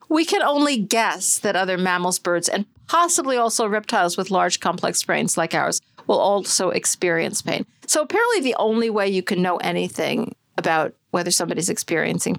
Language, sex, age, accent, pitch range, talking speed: English, female, 50-69, American, 190-240 Hz, 170 wpm